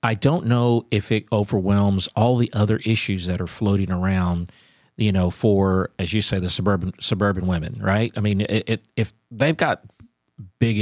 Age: 50-69